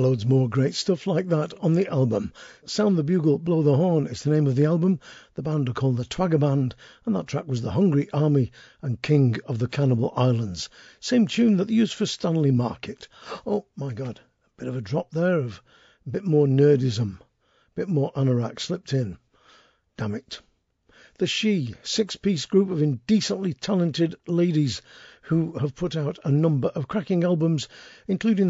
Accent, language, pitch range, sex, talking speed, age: British, English, 135-180 Hz, male, 185 wpm, 50-69